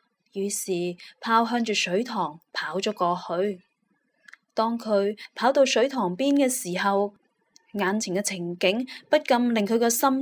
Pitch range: 190-240 Hz